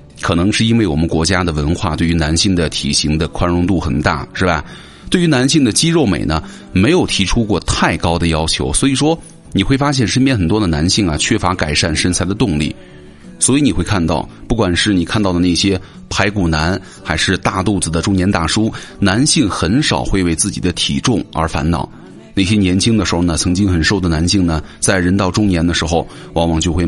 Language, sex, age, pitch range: Chinese, male, 30-49, 80-105 Hz